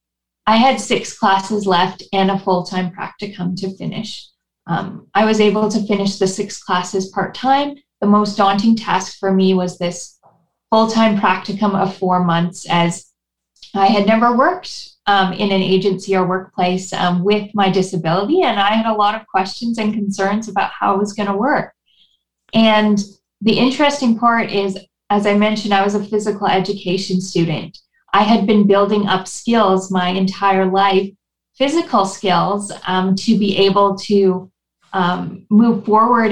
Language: English